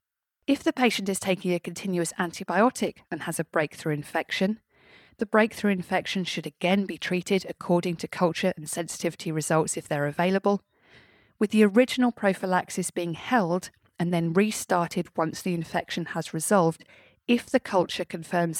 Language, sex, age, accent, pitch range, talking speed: English, female, 30-49, British, 160-195 Hz, 150 wpm